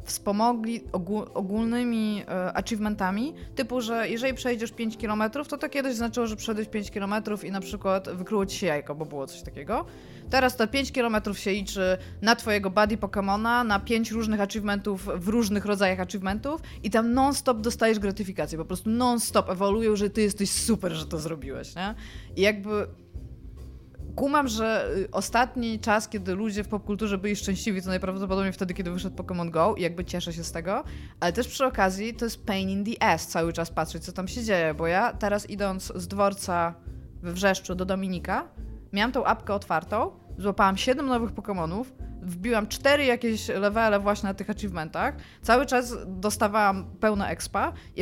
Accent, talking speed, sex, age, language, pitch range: native, 170 wpm, female, 20-39, Polish, 190-230 Hz